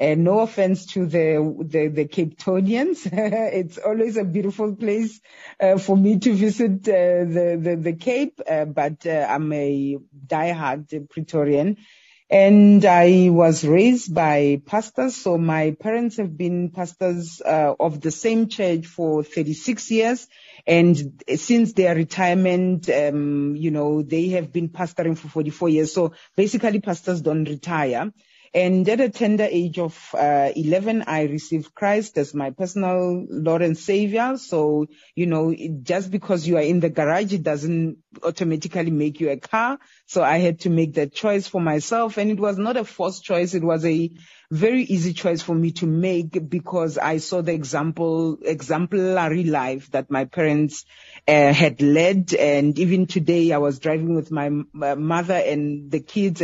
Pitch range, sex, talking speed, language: 155-195 Hz, female, 165 wpm, English